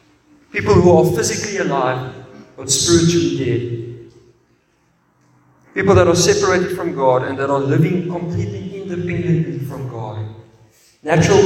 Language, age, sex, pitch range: English, 50-69, male, 130-175 Hz